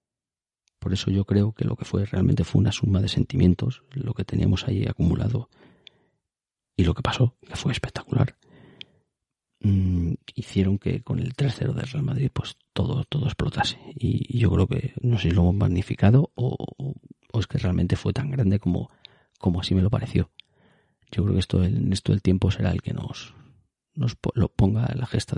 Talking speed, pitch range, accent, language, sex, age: 190 wpm, 95-125 Hz, Spanish, Spanish, male, 40-59